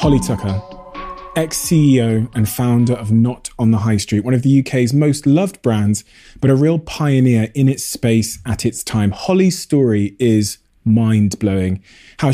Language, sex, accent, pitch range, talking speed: English, male, British, 110-150 Hz, 160 wpm